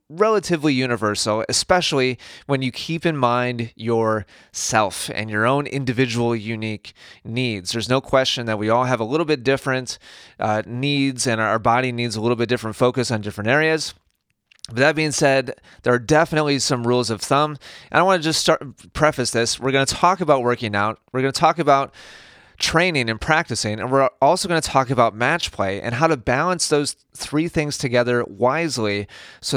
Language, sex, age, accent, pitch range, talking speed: English, male, 30-49, American, 115-145 Hz, 190 wpm